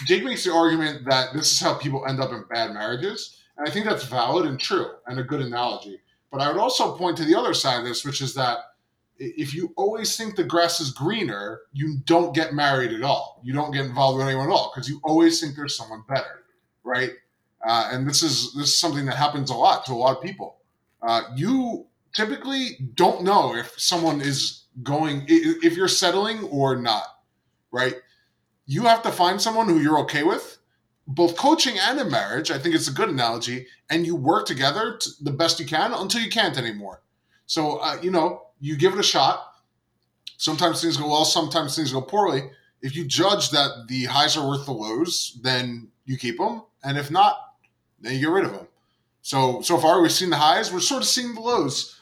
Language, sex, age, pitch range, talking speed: English, male, 20-39, 135-195 Hz, 215 wpm